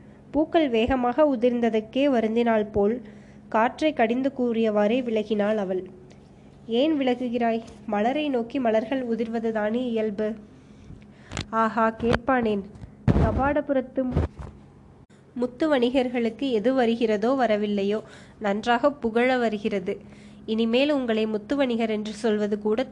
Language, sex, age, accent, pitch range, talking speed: Tamil, female, 20-39, native, 215-250 Hz, 85 wpm